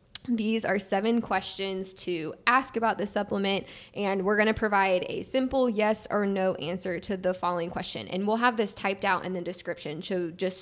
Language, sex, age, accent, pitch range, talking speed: English, female, 10-29, American, 185-220 Hz, 200 wpm